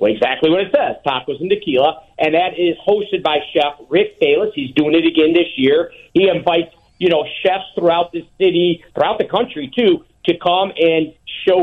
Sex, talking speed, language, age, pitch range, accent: male, 195 wpm, English, 50-69, 165-230 Hz, American